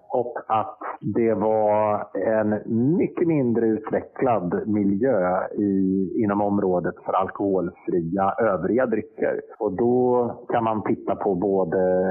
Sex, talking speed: male, 115 wpm